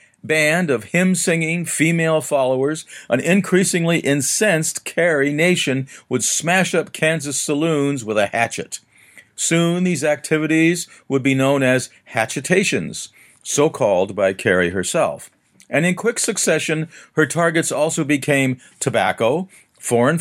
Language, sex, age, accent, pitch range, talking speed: English, male, 50-69, American, 125-170 Hz, 120 wpm